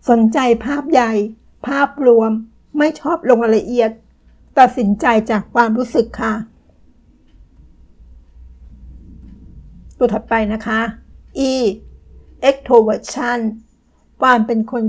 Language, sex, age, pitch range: Thai, female, 60-79, 210-250 Hz